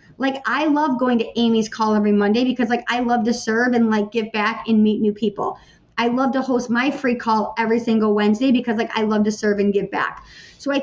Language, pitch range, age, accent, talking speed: English, 220-275 Hz, 30-49, American, 245 wpm